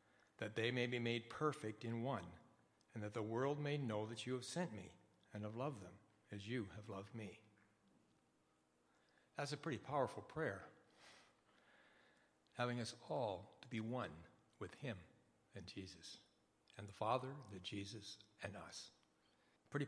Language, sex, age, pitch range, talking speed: English, male, 60-79, 105-125 Hz, 155 wpm